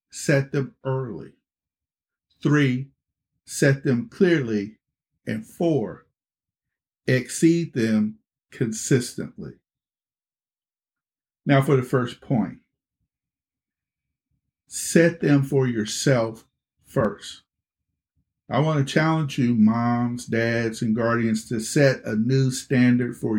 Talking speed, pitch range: 95 wpm, 120-165 Hz